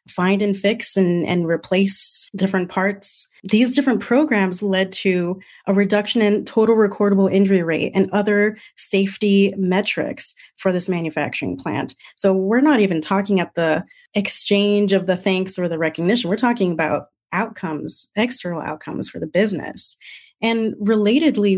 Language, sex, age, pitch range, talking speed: English, female, 30-49, 185-215 Hz, 145 wpm